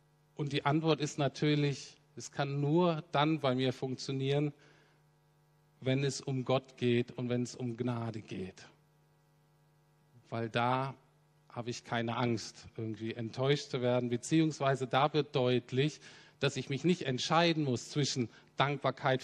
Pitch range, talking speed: 120-150 Hz, 140 wpm